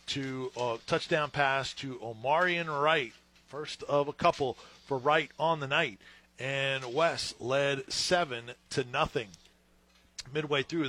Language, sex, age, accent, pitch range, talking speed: English, male, 40-59, American, 125-150 Hz, 130 wpm